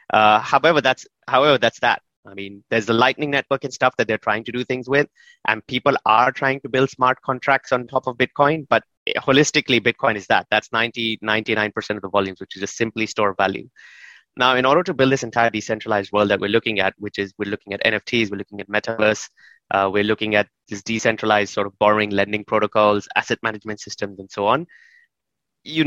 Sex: male